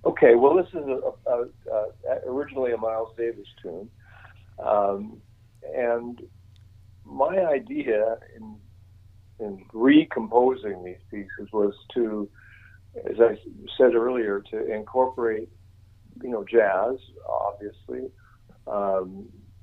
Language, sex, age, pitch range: English, male, 50-69, 100-120 Hz